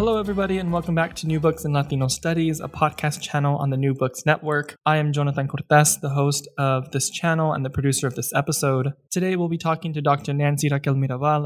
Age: 20-39